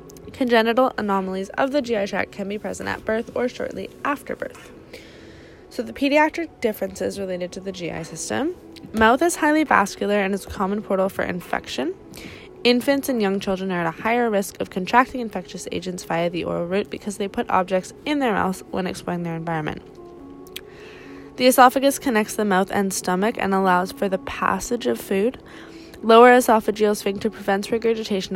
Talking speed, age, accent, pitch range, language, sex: 175 wpm, 20-39, American, 185-230 Hz, English, female